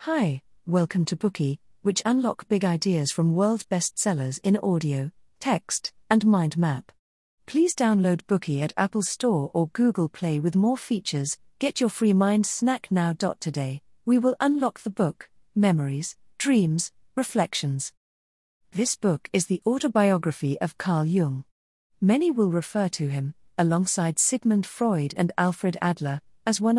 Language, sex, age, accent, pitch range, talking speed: English, female, 40-59, British, 155-215 Hz, 145 wpm